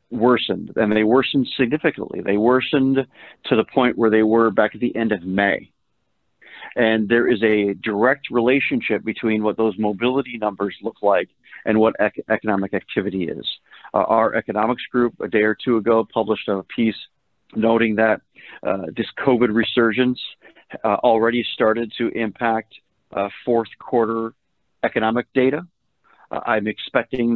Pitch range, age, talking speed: 105-115 Hz, 40-59, 150 wpm